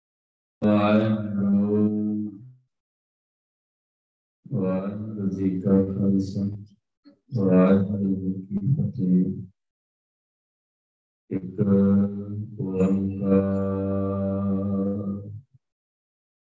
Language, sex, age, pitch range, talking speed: Punjabi, male, 50-69, 95-105 Hz, 45 wpm